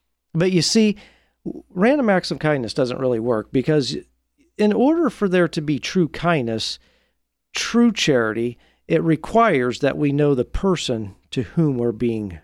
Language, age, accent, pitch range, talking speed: English, 40-59, American, 115-175 Hz, 155 wpm